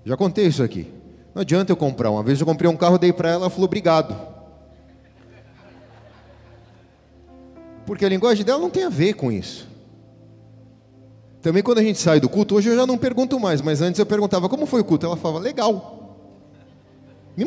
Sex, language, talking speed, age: male, Portuguese, 195 wpm, 40-59